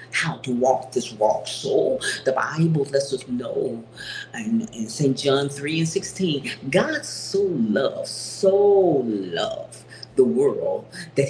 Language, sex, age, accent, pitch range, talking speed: English, female, 40-59, American, 140-215 Hz, 140 wpm